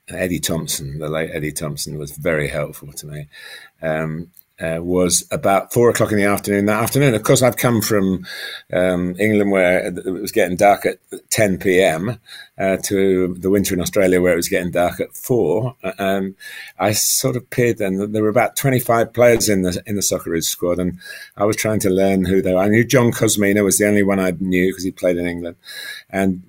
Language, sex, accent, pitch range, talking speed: English, male, British, 85-105 Hz, 210 wpm